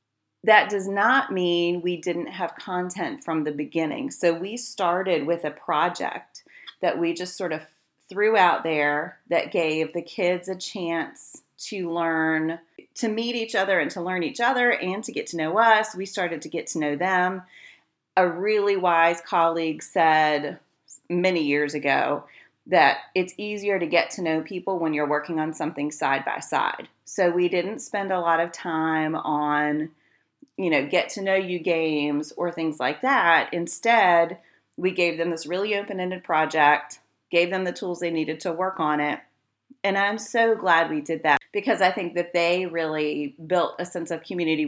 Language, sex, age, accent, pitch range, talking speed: English, female, 30-49, American, 160-190 Hz, 180 wpm